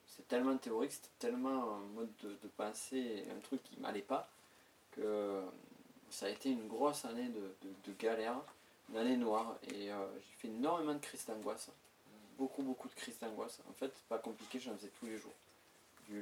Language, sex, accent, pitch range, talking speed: French, male, French, 105-130 Hz, 195 wpm